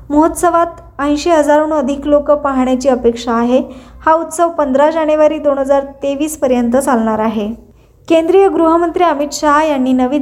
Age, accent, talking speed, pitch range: 20-39, native, 105 wpm, 265-315 Hz